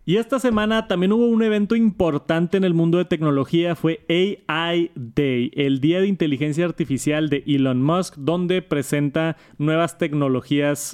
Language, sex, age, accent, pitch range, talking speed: Spanish, male, 30-49, Mexican, 135-165 Hz, 155 wpm